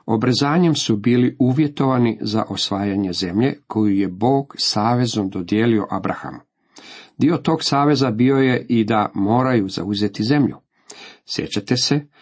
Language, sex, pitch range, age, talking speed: Croatian, male, 100-130 Hz, 50-69, 125 wpm